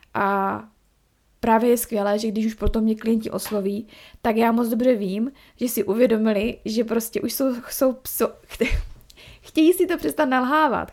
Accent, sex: native, female